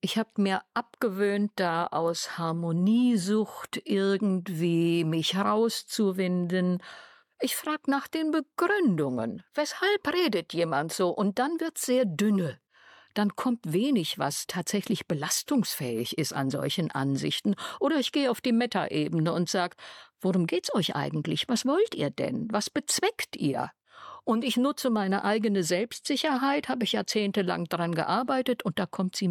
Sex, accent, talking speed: female, German, 140 wpm